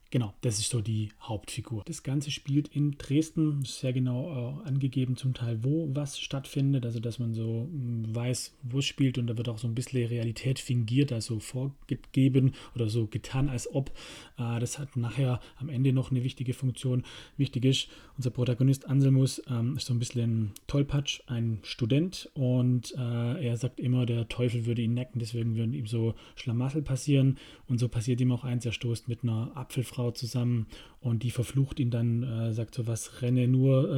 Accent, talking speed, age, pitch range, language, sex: German, 180 wpm, 30-49, 120-135 Hz, German, male